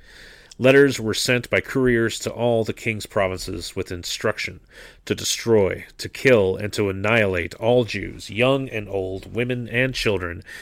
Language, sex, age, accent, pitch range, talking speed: English, male, 30-49, American, 95-120 Hz, 155 wpm